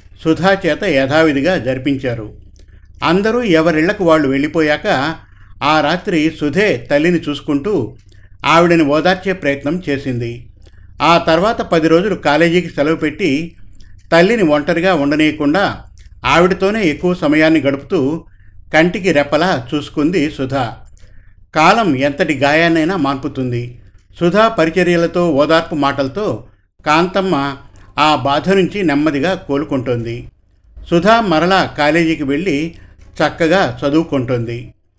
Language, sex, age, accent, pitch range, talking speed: Telugu, male, 50-69, native, 130-175 Hz, 95 wpm